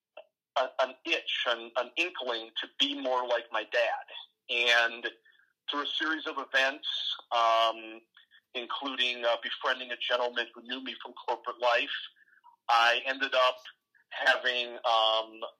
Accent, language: American, English